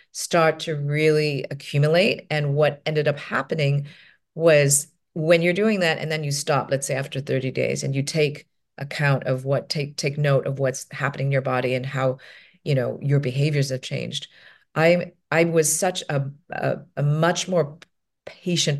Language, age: English, 40-59